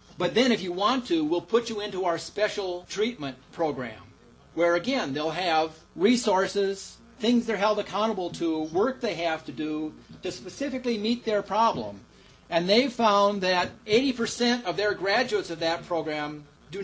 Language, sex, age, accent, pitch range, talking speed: English, male, 40-59, American, 165-225 Hz, 170 wpm